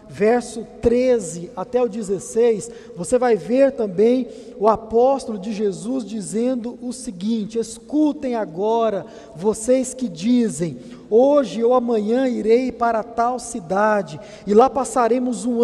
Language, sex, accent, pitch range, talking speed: Portuguese, male, Brazilian, 200-245 Hz, 125 wpm